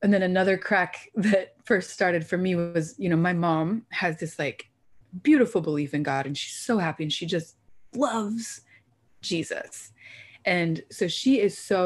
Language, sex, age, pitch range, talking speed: English, female, 20-39, 160-210 Hz, 175 wpm